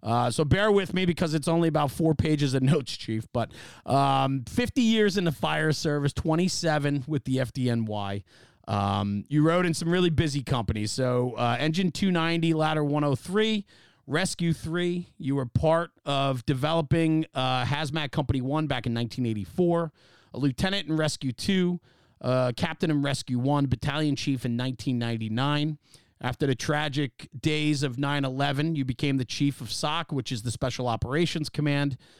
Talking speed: 160 wpm